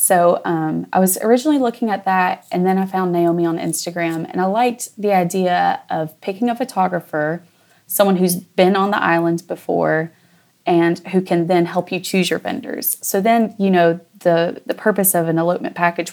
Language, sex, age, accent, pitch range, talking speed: English, female, 20-39, American, 165-185 Hz, 190 wpm